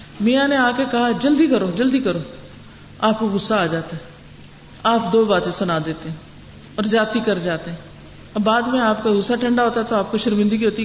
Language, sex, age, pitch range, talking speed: Urdu, female, 50-69, 200-280 Hz, 220 wpm